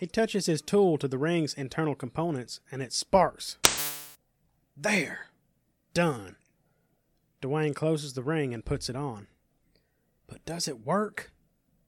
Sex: male